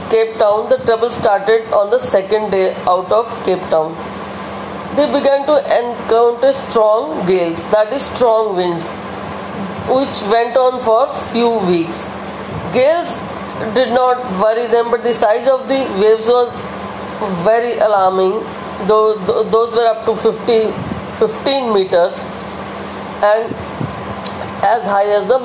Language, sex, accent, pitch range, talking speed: English, female, Indian, 205-240 Hz, 130 wpm